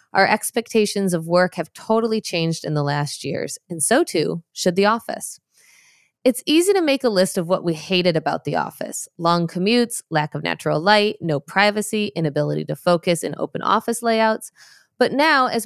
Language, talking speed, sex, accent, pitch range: English, 185 wpm, female, American, 170-220 Hz